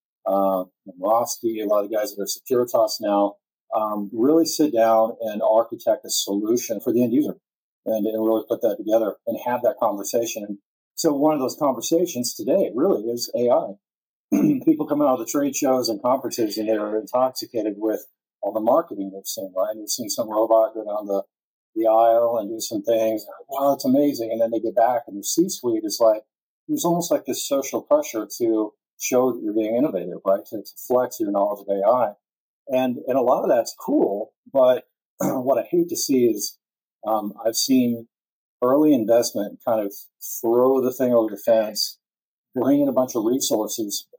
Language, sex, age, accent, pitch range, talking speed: English, male, 40-59, American, 110-160 Hz, 195 wpm